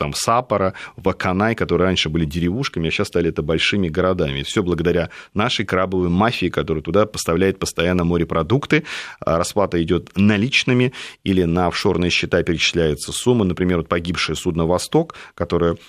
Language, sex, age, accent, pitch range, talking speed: Russian, male, 30-49, native, 85-95 Hz, 145 wpm